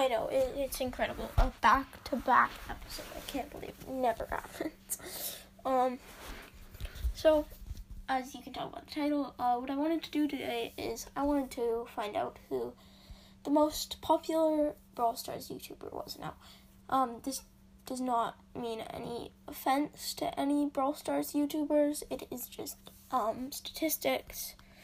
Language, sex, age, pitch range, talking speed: English, female, 10-29, 245-295 Hz, 145 wpm